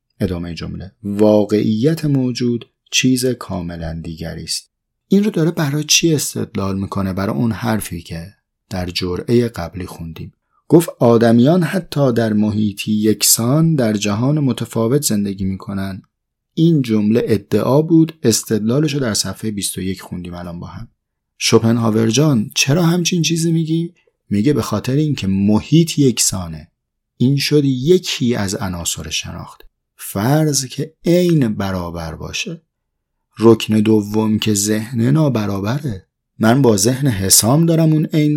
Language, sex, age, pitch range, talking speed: Persian, male, 30-49, 100-140 Hz, 125 wpm